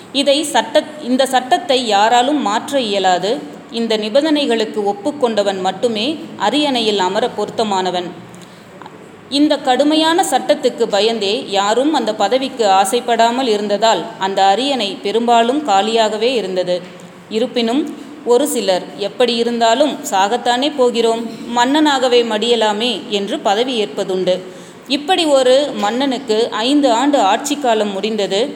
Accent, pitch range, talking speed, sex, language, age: native, 200-260 Hz, 105 wpm, female, Tamil, 30-49